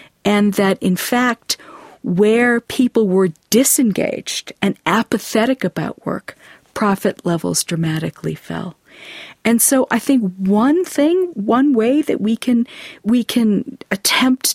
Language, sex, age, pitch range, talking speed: English, female, 50-69, 195-260 Hz, 125 wpm